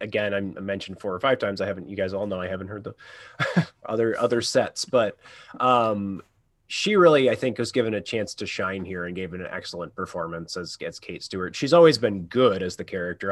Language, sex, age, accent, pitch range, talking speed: English, male, 30-49, American, 90-110 Hz, 220 wpm